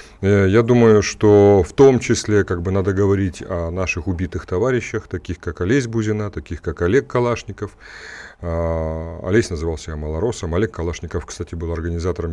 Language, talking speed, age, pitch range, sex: Russian, 140 wpm, 30-49, 85-110 Hz, male